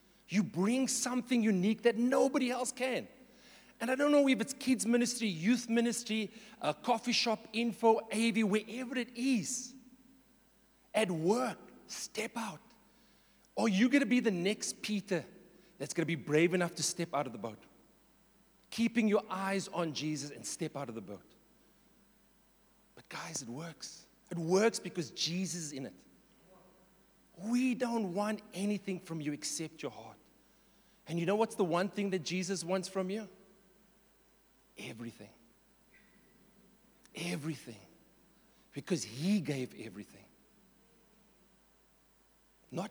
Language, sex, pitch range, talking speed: English, male, 170-225 Hz, 135 wpm